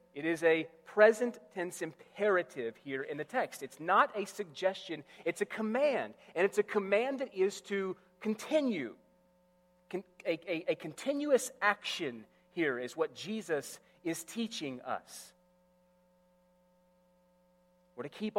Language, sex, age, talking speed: English, male, 30-49, 130 wpm